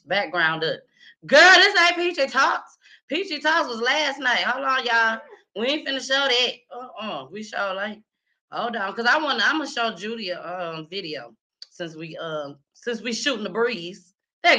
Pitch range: 180-245 Hz